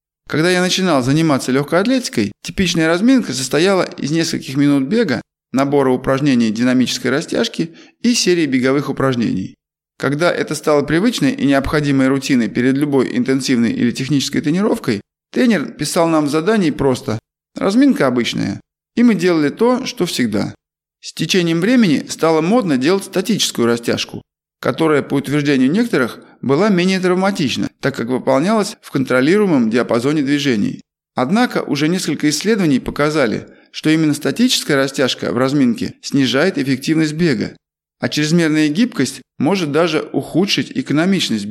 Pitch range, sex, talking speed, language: 135-195 Hz, male, 130 wpm, Russian